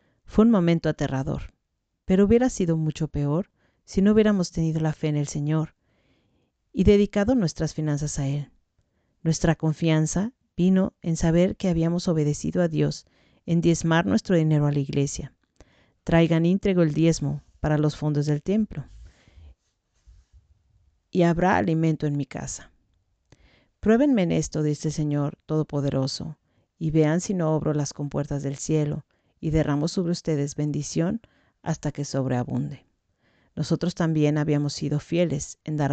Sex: female